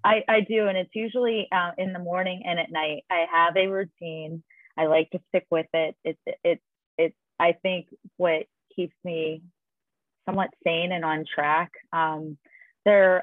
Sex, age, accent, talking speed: female, 30-49, American, 170 wpm